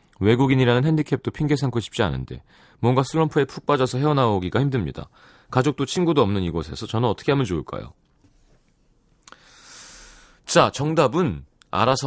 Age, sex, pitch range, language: 30-49, male, 100-150 Hz, Korean